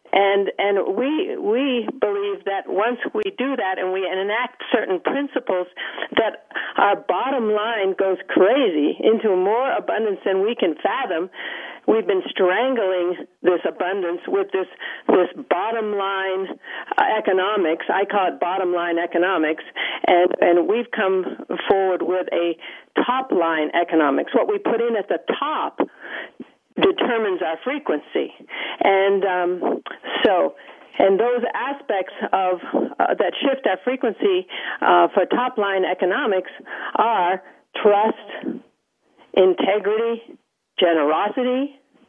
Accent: American